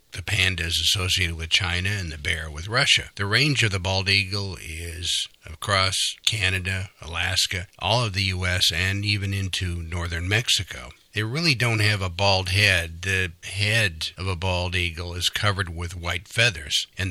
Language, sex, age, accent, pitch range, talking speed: English, male, 60-79, American, 85-105 Hz, 170 wpm